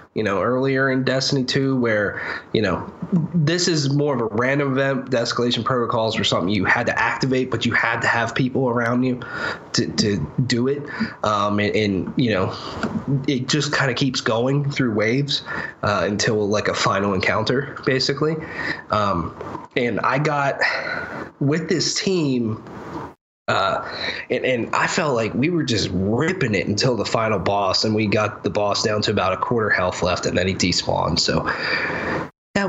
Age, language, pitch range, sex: 20-39, English, 115-150 Hz, male